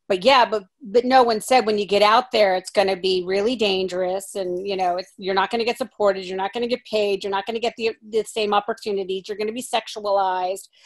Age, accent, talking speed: 40-59, American, 265 wpm